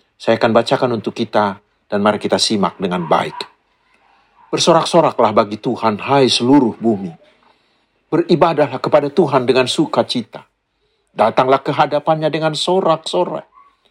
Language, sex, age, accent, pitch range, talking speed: Indonesian, male, 50-69, native, 120-175 Hz, 115 wpm